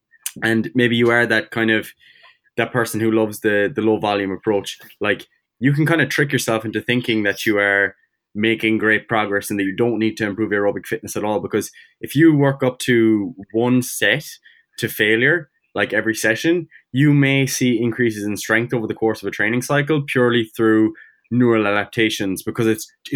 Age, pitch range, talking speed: 20-39, 105-125 Hz, 190 wpm